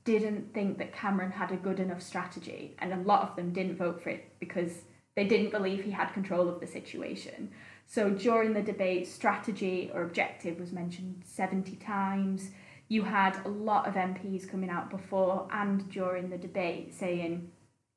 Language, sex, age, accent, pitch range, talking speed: English, female, 10-29, British, 180-205 Hz, 175 wpm